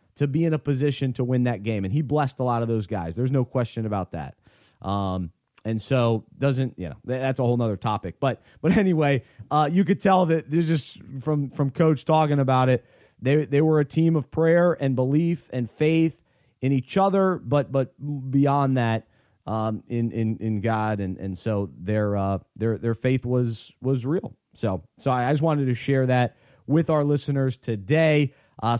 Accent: American